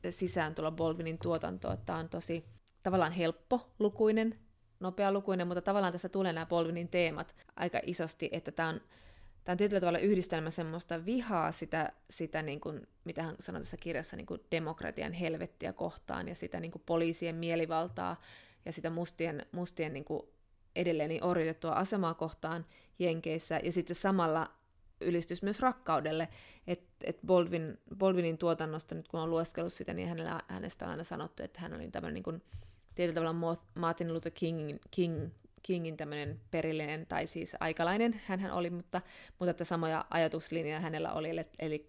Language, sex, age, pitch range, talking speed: Finnish, female, 20-39, 160-175 Hz, 160 wpm